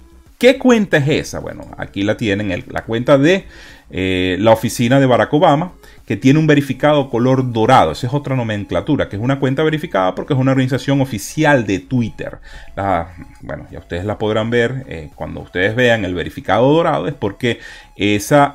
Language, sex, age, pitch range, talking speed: Spanish, male, 30-49, 100-140 Hz, 180 wpm